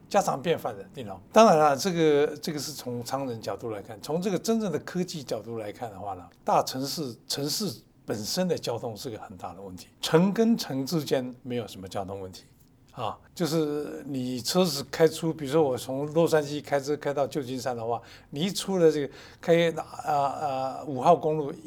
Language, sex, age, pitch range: Chinese, male, 60-79, 115-155 Hz